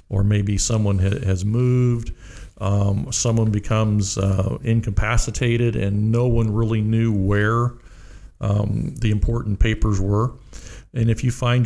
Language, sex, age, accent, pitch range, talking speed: English, male, 50-69, American, 105-120 Hz, 130 wpm